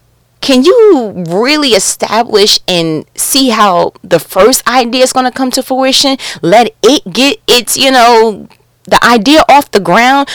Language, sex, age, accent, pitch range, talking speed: English, female, 30-49, American, 205-270 Hz, 155 wpm